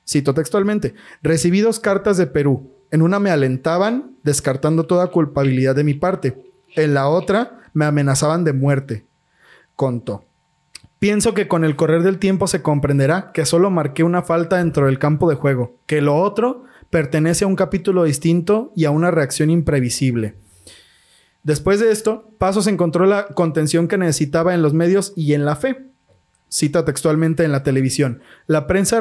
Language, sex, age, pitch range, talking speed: Spanish, male, 30-49, 145-190 Hz, 170 wpm